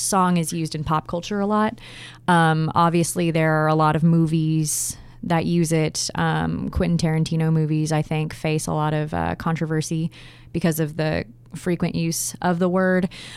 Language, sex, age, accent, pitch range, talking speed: English, female, 20-39, American, 150-175 Hz, 175 wpm